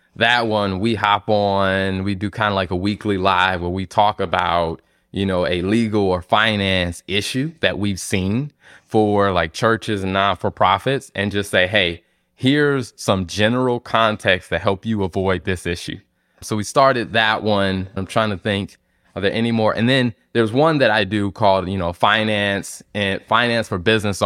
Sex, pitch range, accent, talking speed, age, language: male, 95-110 Hz, American, 190 wpm, 20-39, English